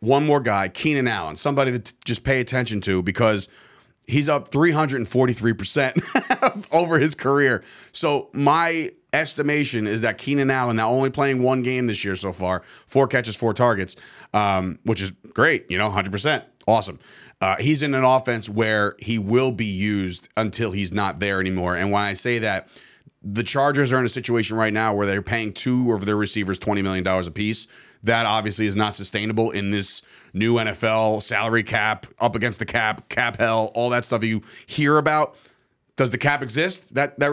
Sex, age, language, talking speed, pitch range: male, 30-49, English, 185 wpm, 105-130 Hz